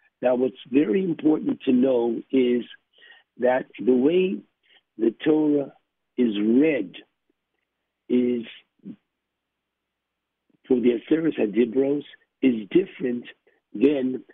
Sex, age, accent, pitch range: male, 60-79, American, 125-170 Hz